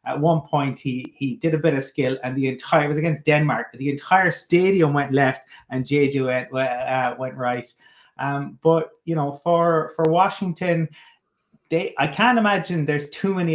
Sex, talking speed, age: male, 190 wpm, 30-49